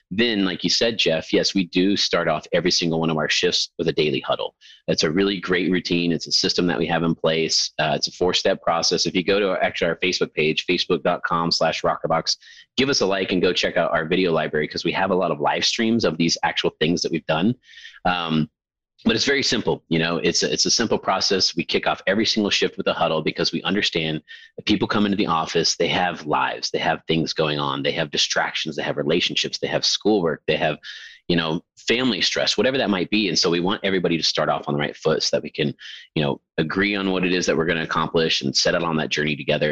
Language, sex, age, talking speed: English, male, 30-49, 255 wpm